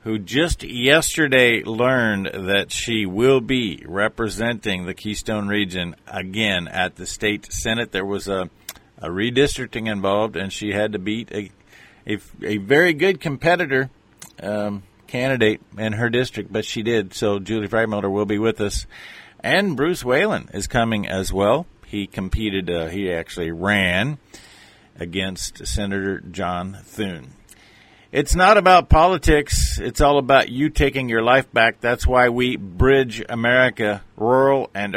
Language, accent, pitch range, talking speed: English, American, 100-125 Hz, 145 wpm